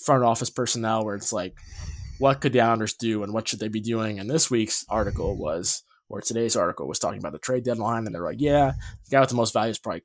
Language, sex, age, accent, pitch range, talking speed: English, male, 20-39, American, 105-130 Hz, 255 wpm